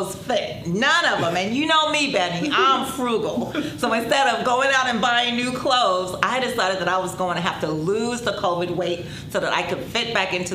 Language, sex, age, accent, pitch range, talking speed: English, female, 30-49, American, 160-210 Hz, 230 wpm